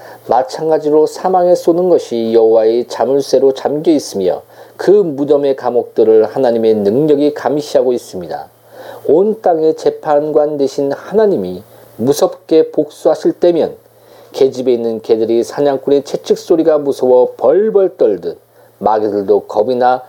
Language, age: Korean, 40-59